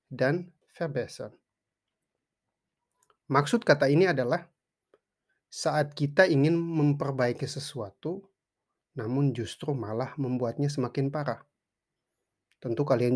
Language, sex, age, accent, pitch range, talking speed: Indonesian, male, 30-49, native, 125-150 Hz, 85 wpm